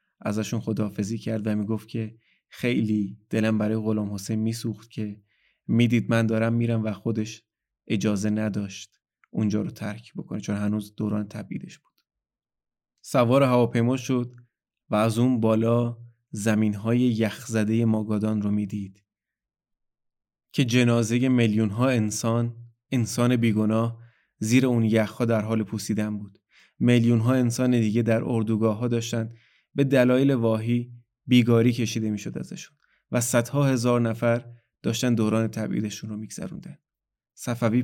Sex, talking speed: male, 130 wpm